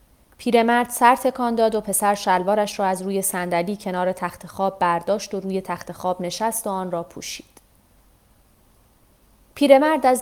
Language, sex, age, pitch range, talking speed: Persian, female, 30-49, 185-225 Hz, 160 wpm